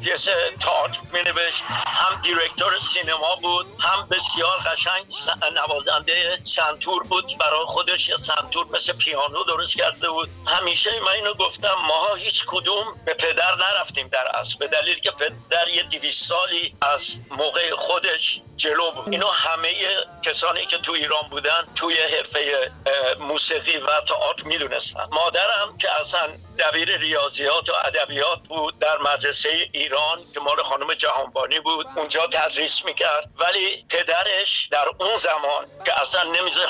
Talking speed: 145 wpm